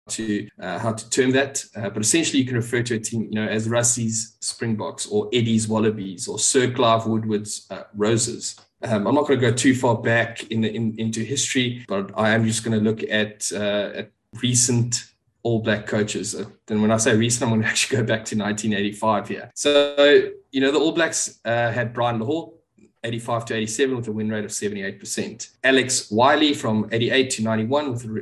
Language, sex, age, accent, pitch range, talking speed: English, male, 20-39, South African, 110-130 Hz, 205 wpm